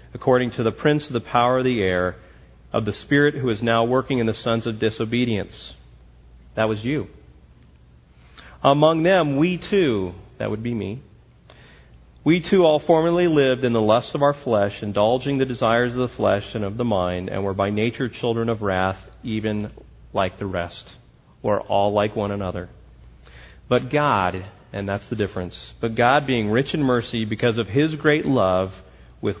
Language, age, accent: English, 40-59, American